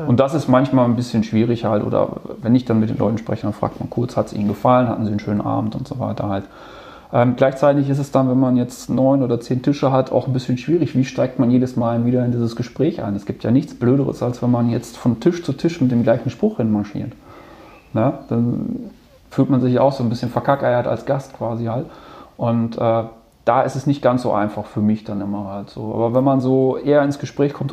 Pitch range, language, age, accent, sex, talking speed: 110-135 Hz, German, 30-49, German, male, 245 wpm